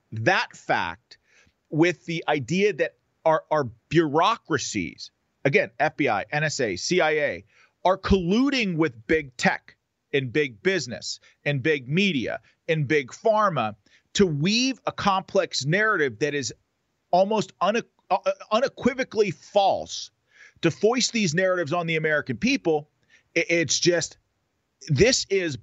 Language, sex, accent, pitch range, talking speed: English, male, American, 135-180 Hz, 115 wpm